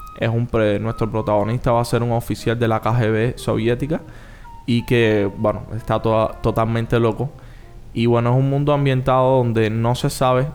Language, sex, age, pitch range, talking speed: Spanish, male, 20-39, 105-115 Hz, 175 wpm